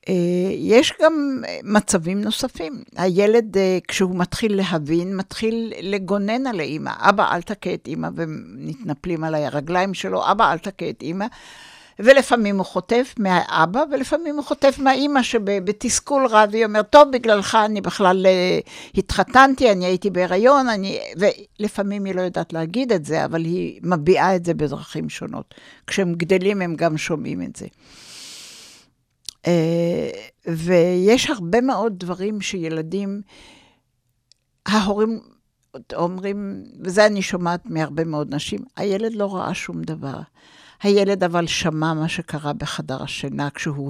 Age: 60-79